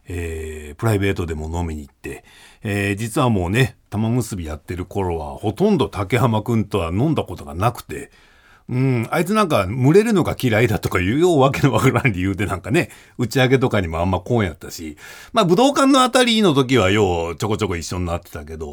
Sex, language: male, Japanese